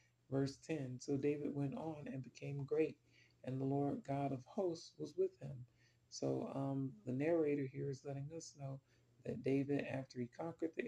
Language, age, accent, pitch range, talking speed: English, 40-59, American, 125-150 Hz, 180 wpm